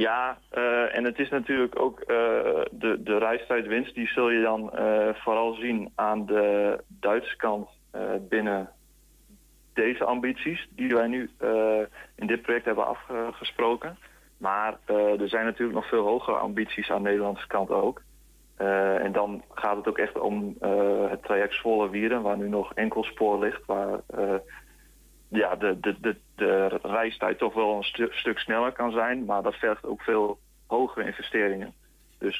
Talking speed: 170 wpm